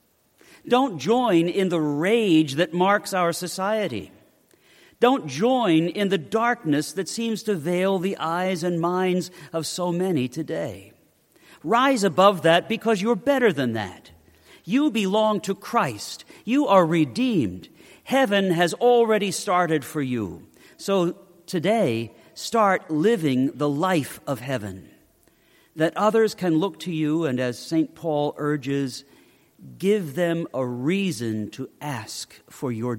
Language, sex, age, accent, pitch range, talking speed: English, male, 50-69, American, 130-195 Hz, 135 wpm